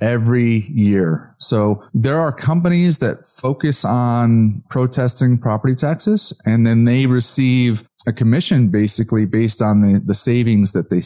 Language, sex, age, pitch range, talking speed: English, male, 30-49, 105-130 Hz, 140 wpm